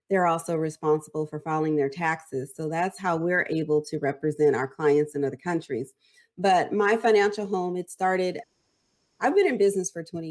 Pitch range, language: 165-205 Hz, English